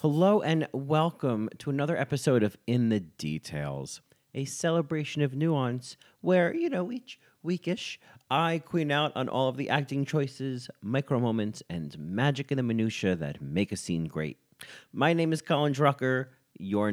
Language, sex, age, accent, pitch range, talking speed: English, male, 30-49, American, 95-145 Hz, 160 wpm